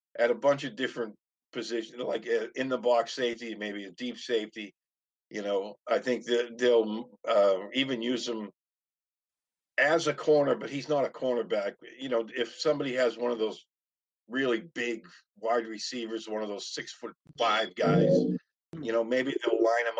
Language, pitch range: English, 110-135 Hz